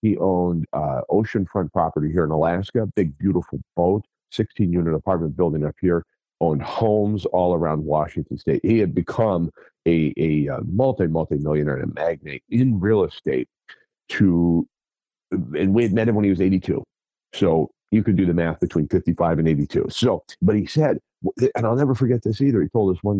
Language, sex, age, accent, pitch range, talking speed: English, male, 50-69, American, 80-110 Hz, 185 wpm